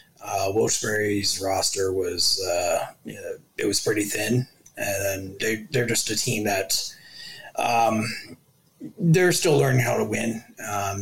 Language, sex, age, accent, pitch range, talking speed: English, male, 30-49, American, 110-140 Hz, 135 wpm